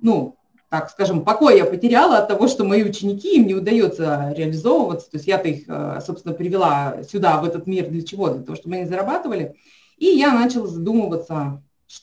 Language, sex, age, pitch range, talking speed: Russian, female, 20-39, 180-245 Hz, 180 wpm